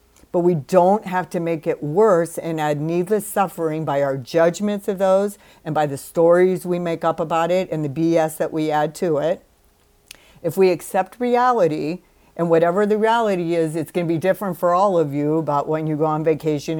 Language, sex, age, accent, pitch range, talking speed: English, female, 50-69, American, 160-195 Hz, 205 wpm